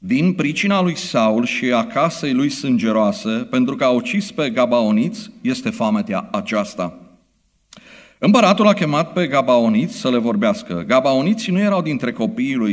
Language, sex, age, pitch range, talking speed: Romanian, male, 50-69, 140-215 Hz, 150 wpm